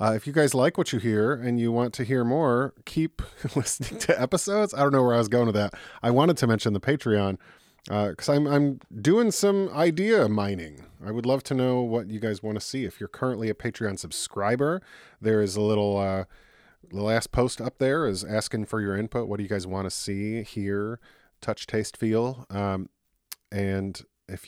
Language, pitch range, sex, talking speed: English, 100-125 Hz, male, 215 wpm